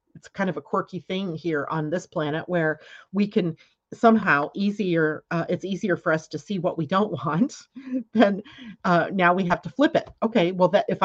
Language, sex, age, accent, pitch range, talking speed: English, female, 40-59, American, 155-205 Hz, 205 wpm